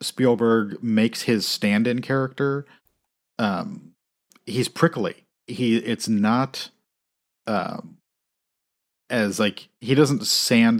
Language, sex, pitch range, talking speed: English, male, 95-115 Hz, 95 wpm